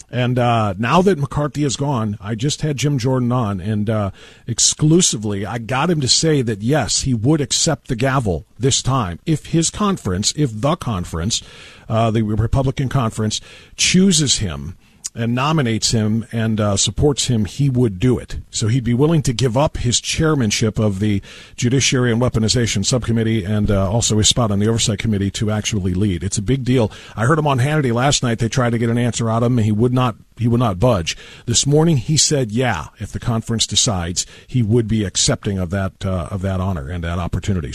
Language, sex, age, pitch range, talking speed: English, male, 50-69, 110-150 Hz, 205 wpm